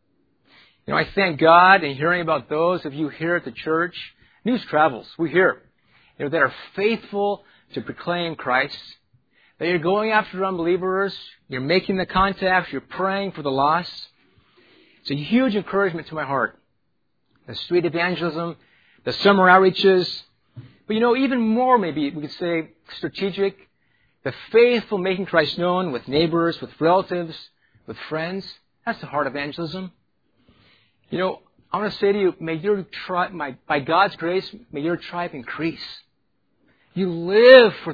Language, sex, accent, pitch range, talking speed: English, male, American, 155-210 Hz, 160 wpm